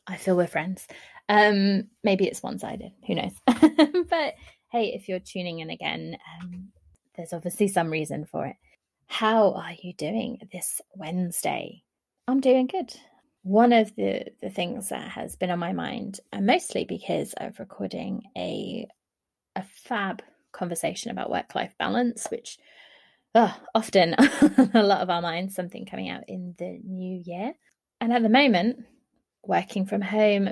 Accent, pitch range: British, 185-240 Hz